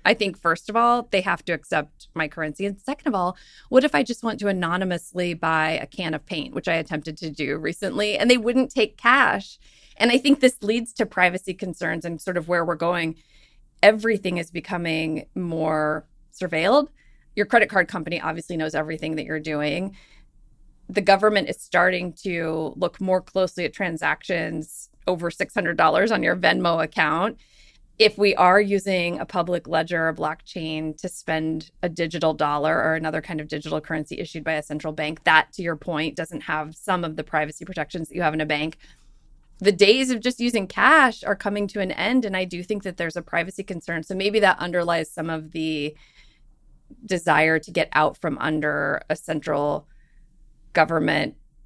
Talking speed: 185 wpm